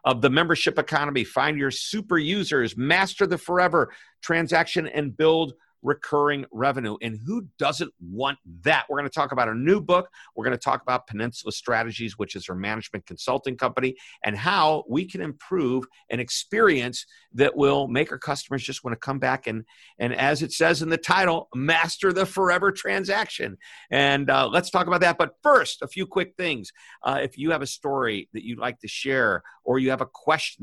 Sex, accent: male, American